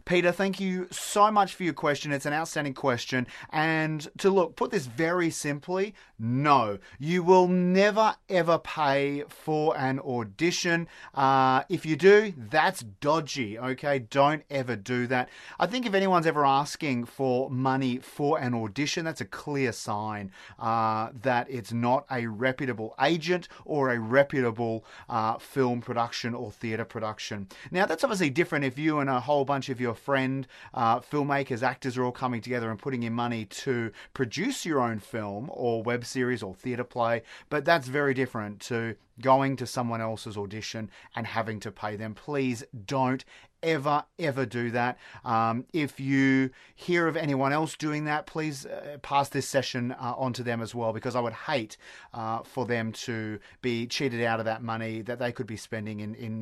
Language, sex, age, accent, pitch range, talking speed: English, male, 30-49, Australian, 115-150 Hz, 175 wpm